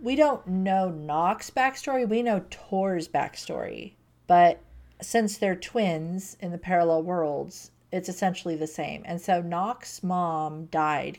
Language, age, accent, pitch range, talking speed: English, 40-59, American, 155-185 Hz, 140 wpm